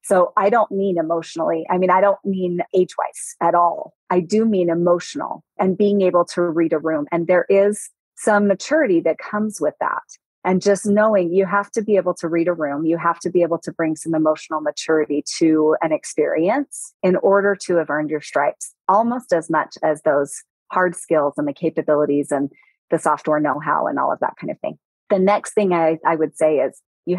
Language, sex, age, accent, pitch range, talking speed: English, female, 30-49, American, 165-215 Hz, 210 wpm